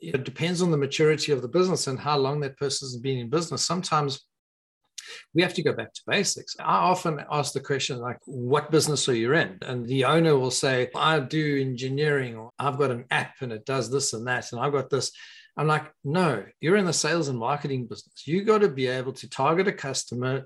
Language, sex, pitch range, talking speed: English, male, 125-160 Hz, 230 wpm